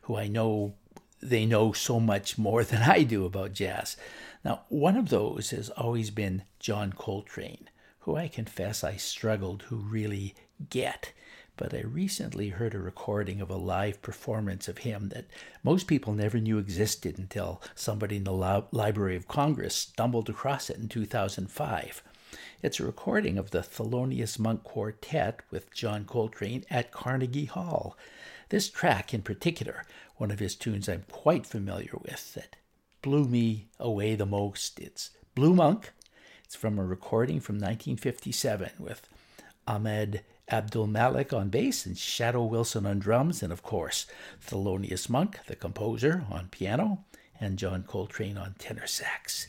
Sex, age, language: male, 60-79, English